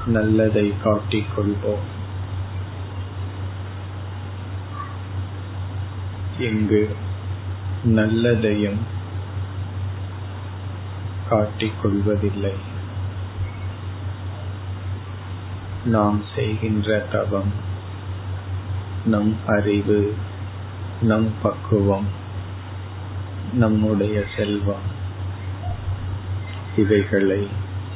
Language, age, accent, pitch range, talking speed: Tamil, 50-69, native, 95-105 Hz, 30 wpm